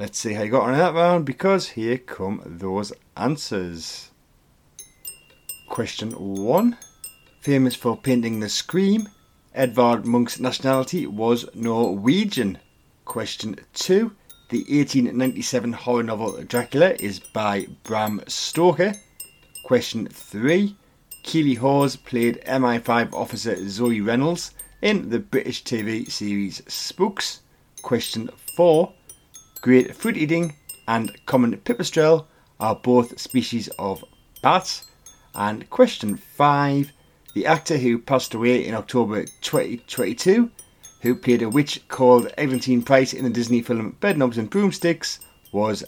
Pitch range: 115-160 Hz